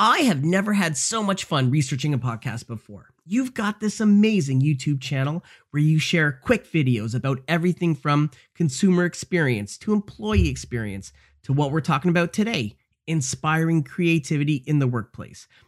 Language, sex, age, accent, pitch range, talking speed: English, male, 30-49, American, 140-205 Hz, 155 wpm